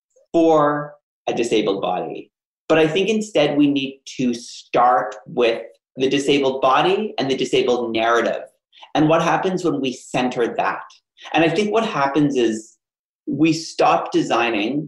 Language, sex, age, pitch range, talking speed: English, male, 40-59, 120-150 Hz, 145 wpm